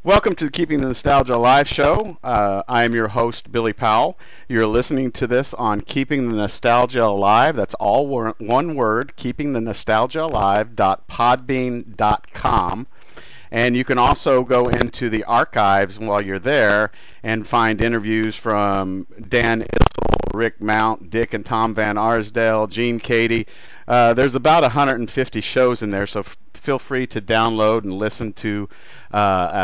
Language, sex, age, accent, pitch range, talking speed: English, male, 50-69, American, 110-125 Hz, 145 wpm